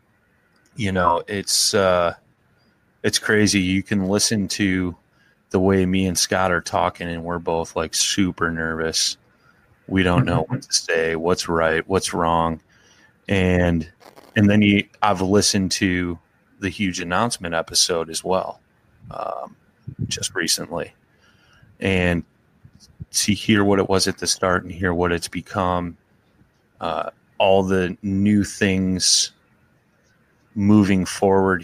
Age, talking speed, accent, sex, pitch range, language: 30-49, 135 wpm, American, male, 85-95 Hz, English